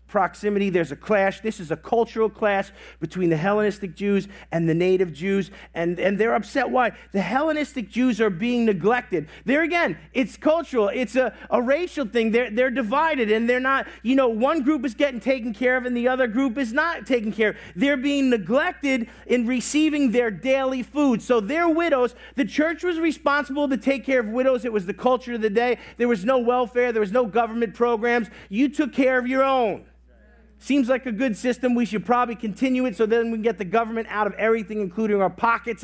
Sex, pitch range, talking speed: male, 210-275 Hz, 210 wpm